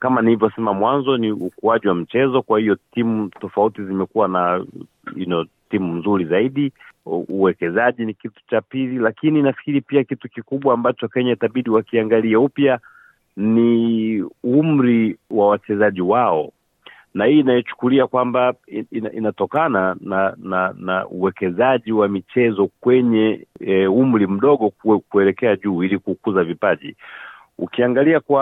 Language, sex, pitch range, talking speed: Swahili, male, 110-135 Hz, 140 wpm